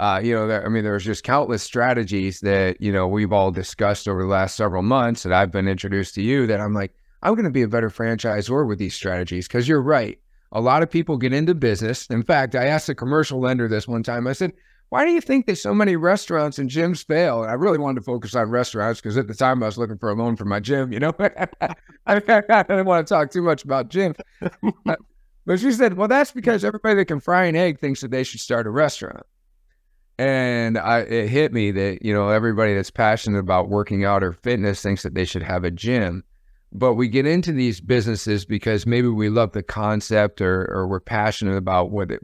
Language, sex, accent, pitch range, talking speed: English, male, American, 100-130 Hz, 235 wpm